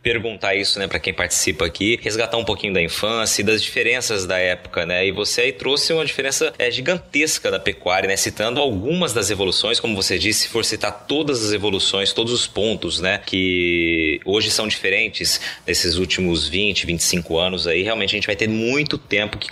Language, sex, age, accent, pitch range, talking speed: Portuguese, male, 20-39, Brazilian, 100-140 Hz, 195 wpm